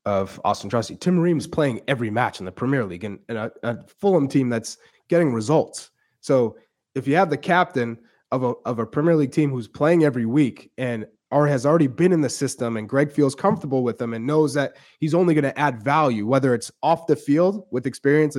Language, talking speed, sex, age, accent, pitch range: English, 220 wpm, male, 20-39, American, 120-155 Hz